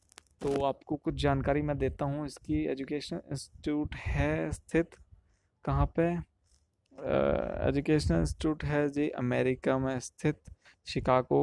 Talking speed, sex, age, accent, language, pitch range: 115 wpm, male, 20-39, native, Hindi, 125-150 Hz